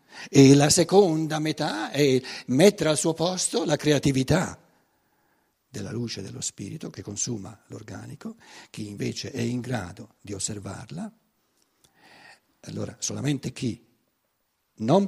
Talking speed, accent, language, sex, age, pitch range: 115 wpm, native, Italian, male, 60-79, 110-180 Hz